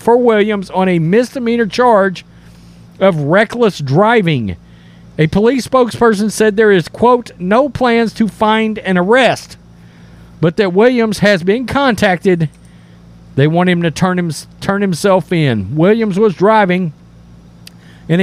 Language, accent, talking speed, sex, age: English, American, 130 wpm, male, 40-59